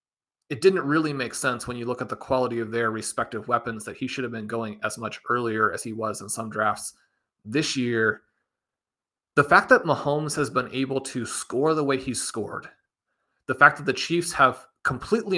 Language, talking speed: English, 205 wpm